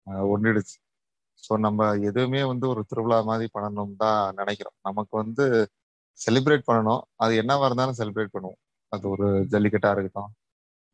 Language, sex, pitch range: Tamil, male, 100-120 Hz